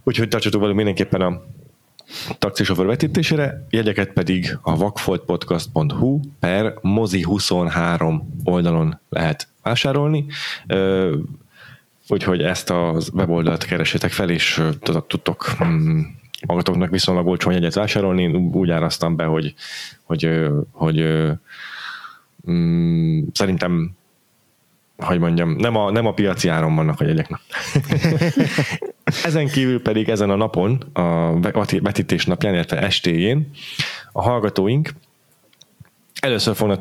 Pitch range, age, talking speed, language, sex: 90-125 Hz, 20-39, 105 wpm, Hungarian, male